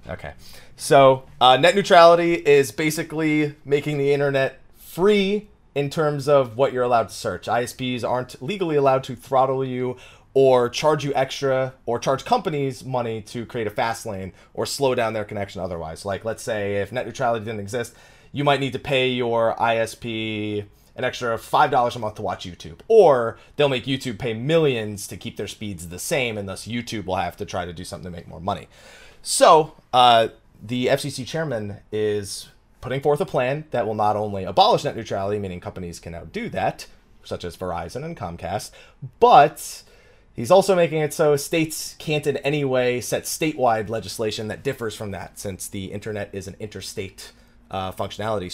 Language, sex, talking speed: English, male, 185 wpm